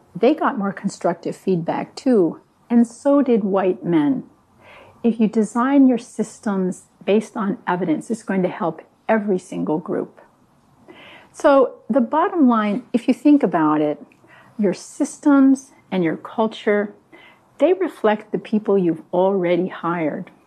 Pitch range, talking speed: 185-255 Hz, 140 wpm